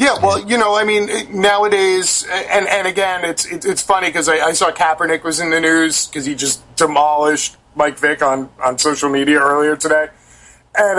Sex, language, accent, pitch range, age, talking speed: male, English, American, 160-210 Hz, 30-49, 195 wpm